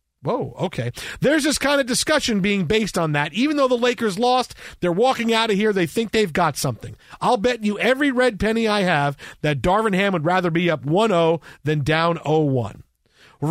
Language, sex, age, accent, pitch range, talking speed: English, male, 40-59, American, 160-220 Hz, 200 wpm